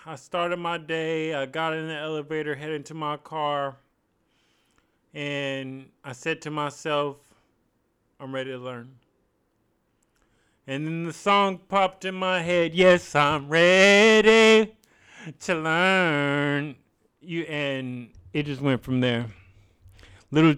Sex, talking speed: male, 125 wpm